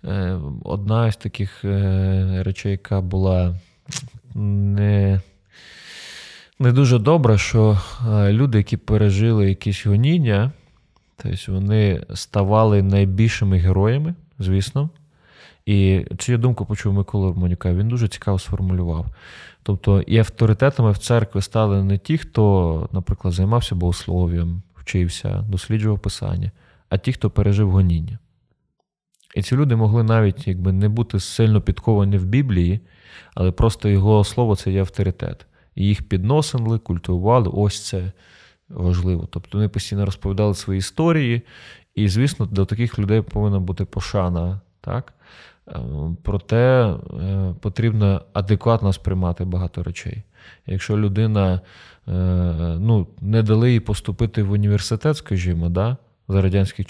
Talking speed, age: 115 wpm, 20-39